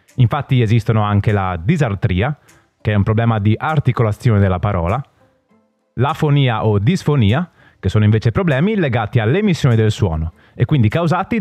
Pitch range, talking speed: 105-150 Hz, 140 wpm